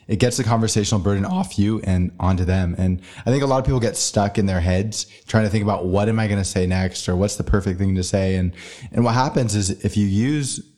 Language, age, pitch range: English, 20-39, 95-115 Hz